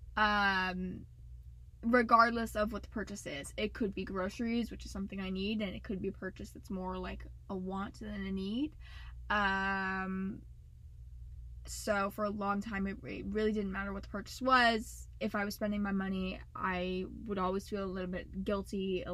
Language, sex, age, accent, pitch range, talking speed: English, female, 10-29, American, 185-220 Hz, 185 wpm